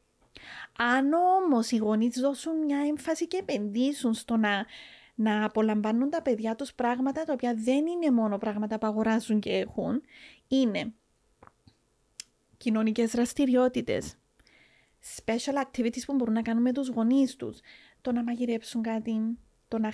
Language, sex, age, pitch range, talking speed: Greek, female, 30-49, 225-270 Hz, 140 wpm